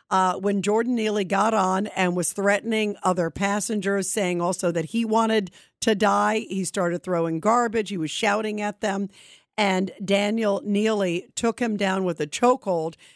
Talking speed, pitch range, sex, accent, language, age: 165 wpm, 190-230 Hz, female, American, English, 50-69